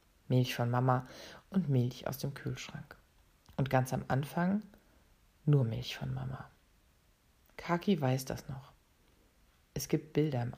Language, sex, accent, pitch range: German, female, German, 120-145 Hz